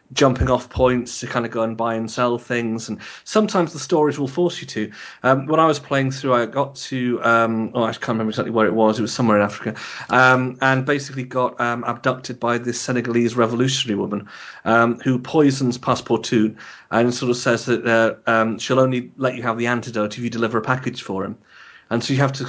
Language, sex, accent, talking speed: English, male, British, 225 wpm